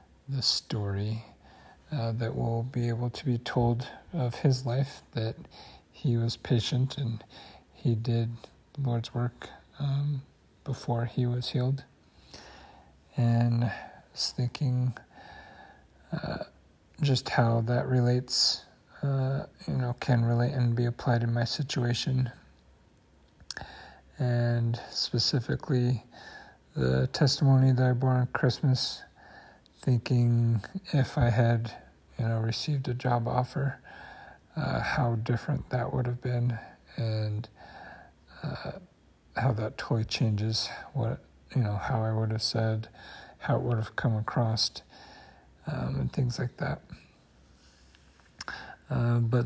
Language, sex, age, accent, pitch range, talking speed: English, male, 50-69, American, 110-130 Hz, 125 wpm